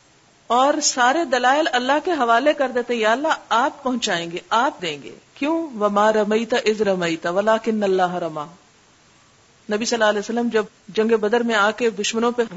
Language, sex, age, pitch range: Urdu, female, 50-69, 185-255 Hz